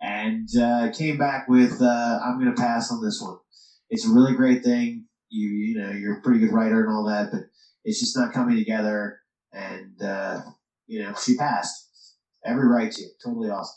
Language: English